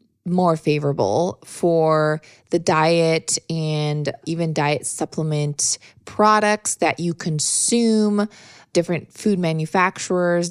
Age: 20-39